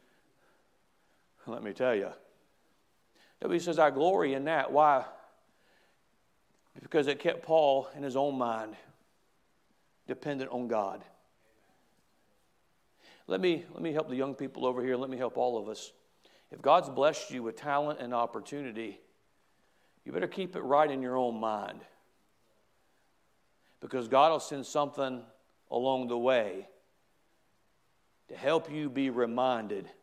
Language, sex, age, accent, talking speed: English, male, 50-69, American, 135 wpm